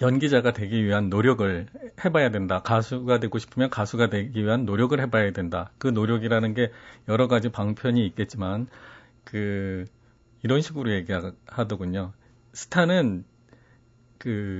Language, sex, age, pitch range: Korean, male, 40-59, 110-135 Hz